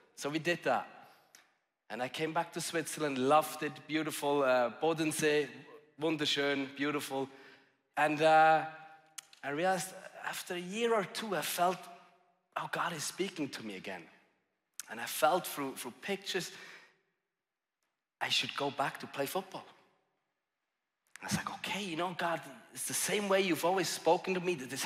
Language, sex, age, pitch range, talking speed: English, male, 30-49, 145-180 Hz, 160 wpm